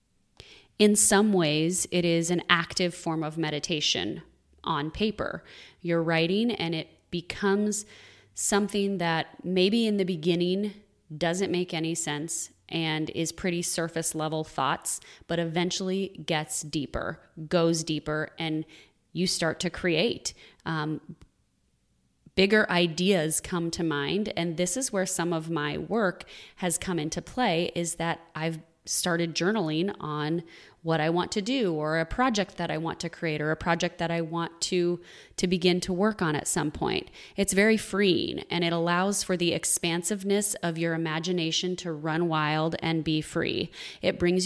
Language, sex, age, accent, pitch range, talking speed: English, female, 30-49, American, 160-185 Hz, 155 wpm